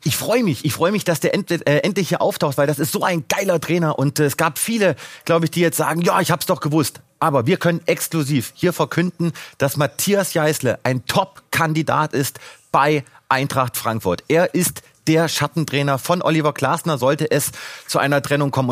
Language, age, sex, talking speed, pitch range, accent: German, 30-49, male, 205 wpm, 140-175 Hz, German